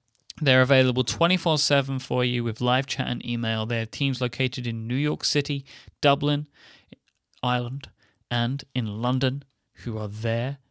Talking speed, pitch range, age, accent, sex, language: 145 wpm, 115-145 Hz, 30-49, British, male, English